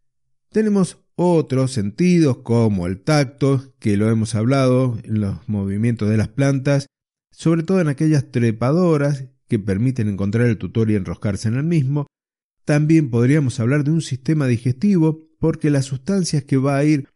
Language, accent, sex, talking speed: Spanish, Argentinian, male, 155 wpm